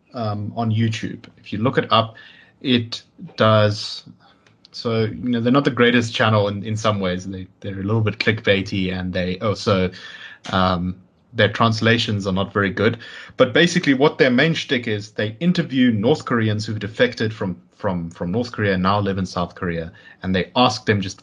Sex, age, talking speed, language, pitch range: male, 30-49, 190 wpm, English, 95-120 Hz